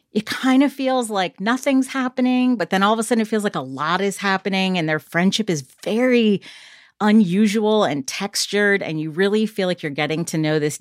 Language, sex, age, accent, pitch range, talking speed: English, female, 40-59, American, 155-215 Hz, 210 wpm